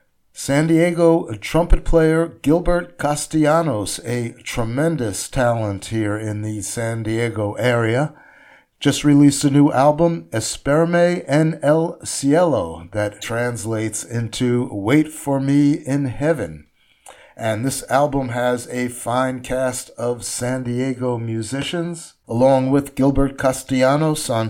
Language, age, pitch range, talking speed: English, 50-69, 110-145 Hz, 120 wpm